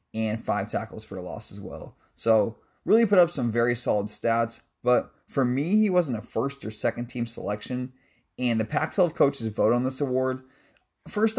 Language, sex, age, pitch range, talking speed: English, male, 20-39, 110-140 Hz, 190 wpm